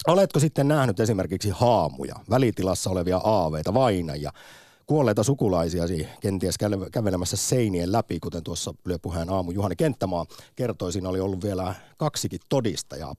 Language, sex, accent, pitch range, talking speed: Finnish, male, native, 95-125 Hz, 125 wpm